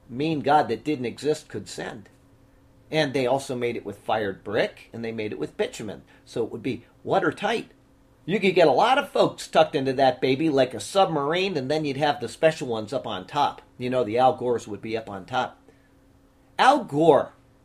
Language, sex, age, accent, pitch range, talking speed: English, male, 40-59, American, 125-170 Hz, 210 wpm